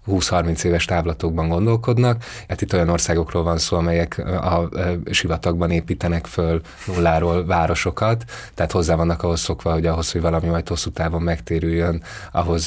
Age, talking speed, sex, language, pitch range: 30-49, 155 wpm, male, Hungarian, 85-100 Hz